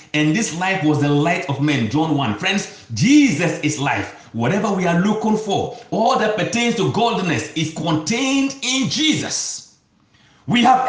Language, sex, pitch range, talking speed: English, male, 140-215 Hz, 165 wpm